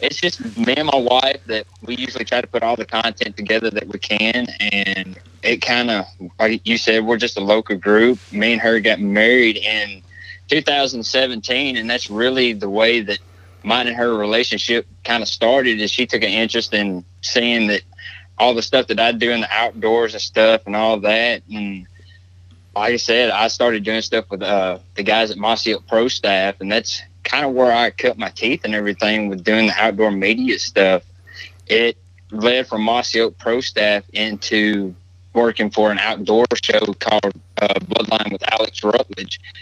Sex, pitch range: male, 95-115 Hz